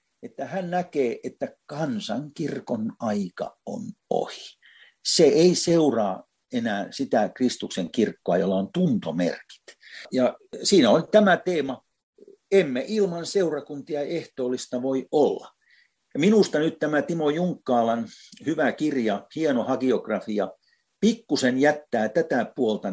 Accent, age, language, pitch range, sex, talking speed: native, 60-79, Finnish, 125-205 Hz, male, 115 wpm